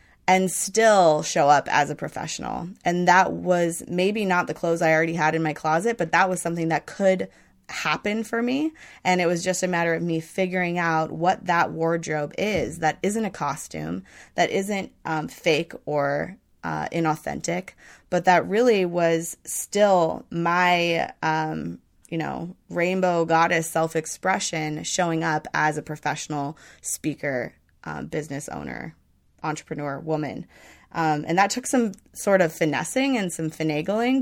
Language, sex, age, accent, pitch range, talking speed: English, female, 20-39, American, 155-180 Hz, 155 wpm